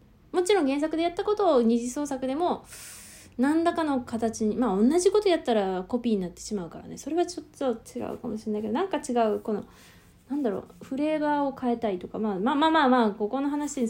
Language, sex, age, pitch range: Japanese, female, 20-39, 195-265 Hz